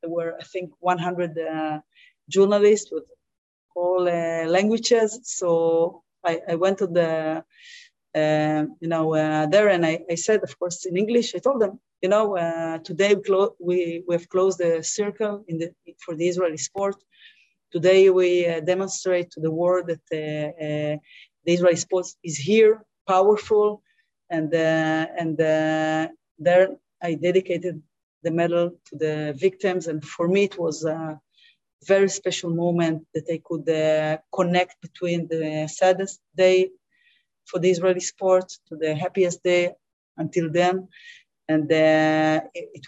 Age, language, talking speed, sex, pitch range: 30-49, English, 155 wpm, female, 160-185 Hz